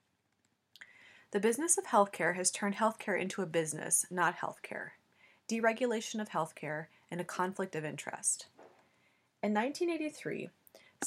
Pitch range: 170-220 Hz